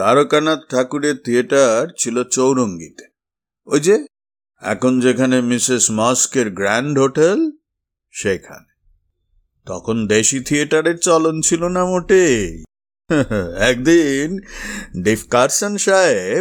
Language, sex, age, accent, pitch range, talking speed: Bengali, male, 50-69, native, 100-170 Hz, 50 wpm